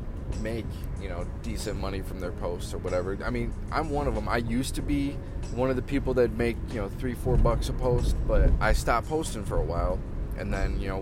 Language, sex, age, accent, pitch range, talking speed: English, male, 20-39, American, 95-115 Hz, 240 wpm